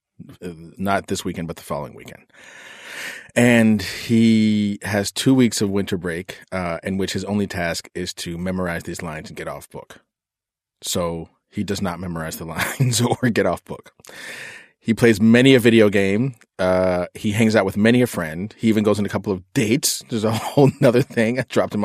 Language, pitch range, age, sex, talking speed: English, 95-115 Hz, 30-49, male, 195 wpm